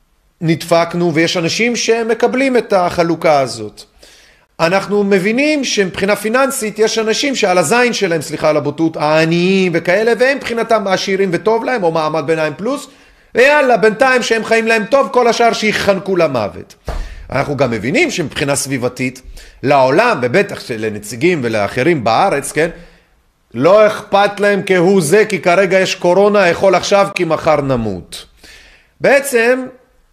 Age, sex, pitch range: 30-49, male, 150-215 Hz